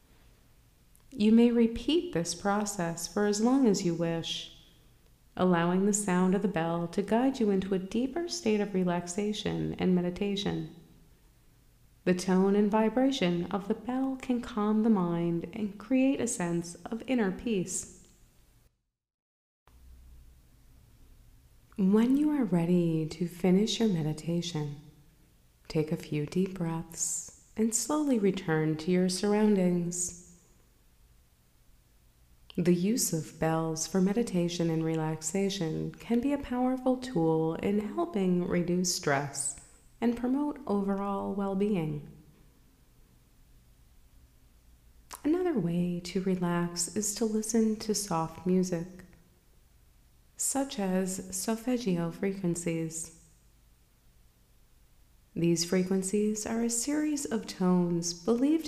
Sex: female